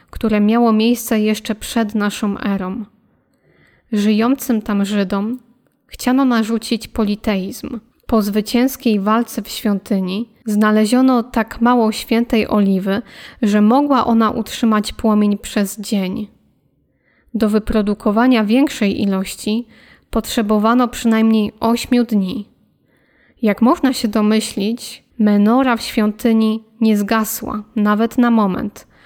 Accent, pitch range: native, 210-235 Hz